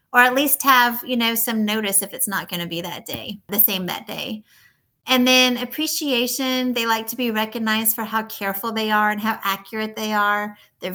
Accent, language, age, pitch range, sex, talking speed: American, English, 30-49, 195-235 Hz, female, 215 wpm